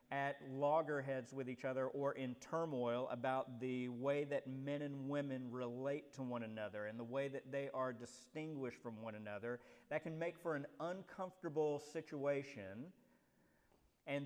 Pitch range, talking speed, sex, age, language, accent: 130-155 Hz, 155 wpm, male, 50-69, English, American